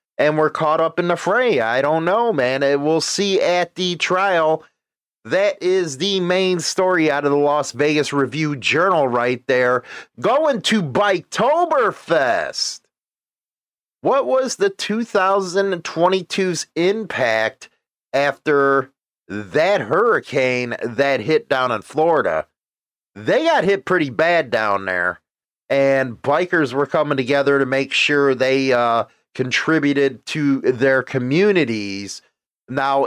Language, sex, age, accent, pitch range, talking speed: English, male, 30-49, American, 135-190 Hz, 120 wpm